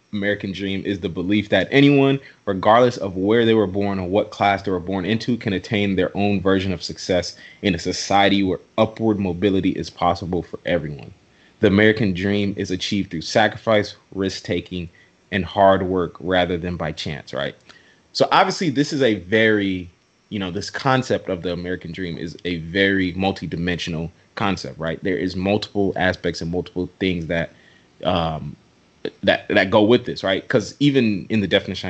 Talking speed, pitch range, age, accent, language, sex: 175 wpm, 90-105 Hz, 20-39, American, English, male